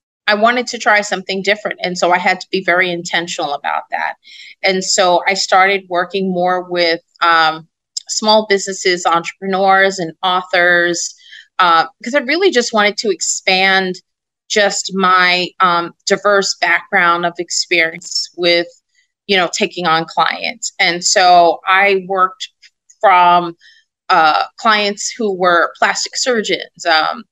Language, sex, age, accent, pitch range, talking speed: English, female, 30-49, American, 170-210 Hz, 135 wpm